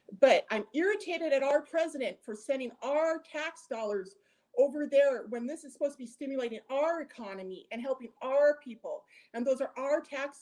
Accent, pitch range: American, 220-310 Hz